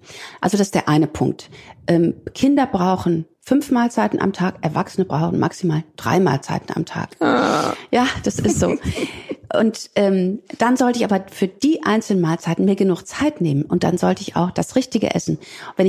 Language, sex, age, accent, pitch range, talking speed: German, female, 40-59, German, 175-230 Hz, 175 wpm